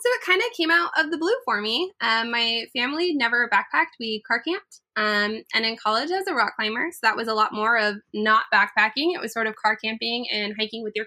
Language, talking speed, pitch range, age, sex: English, 250 wpm, 215-315 Hz, 20-39, female